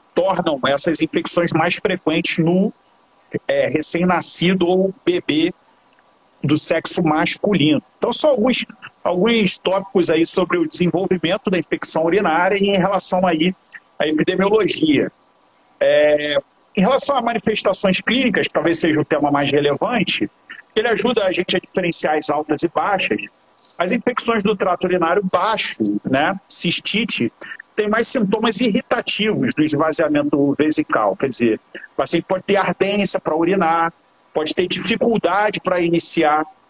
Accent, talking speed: Brazilian, 130 wpm